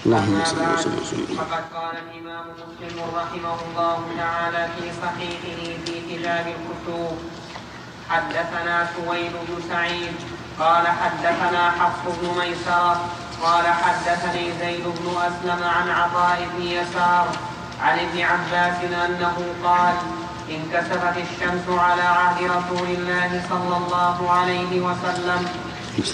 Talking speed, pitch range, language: 100 wpm, 175-180 Hz, Arabic